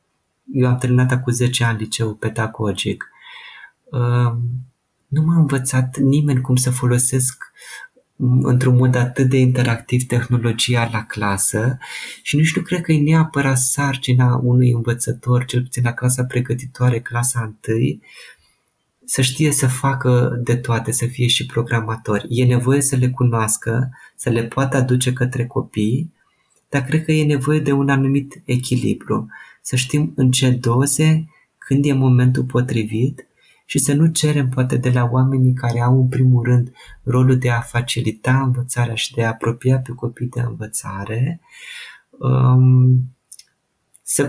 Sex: male